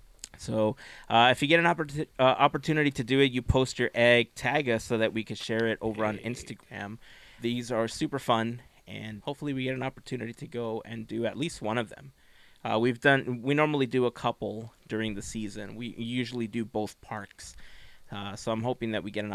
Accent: American